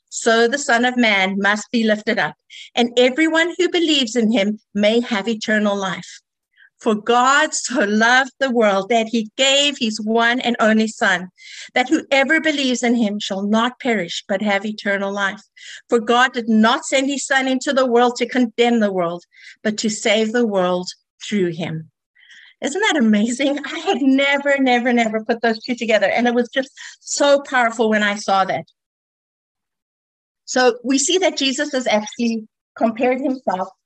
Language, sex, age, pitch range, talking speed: English, female, 50-69, 210-275 Hz, 170 wpm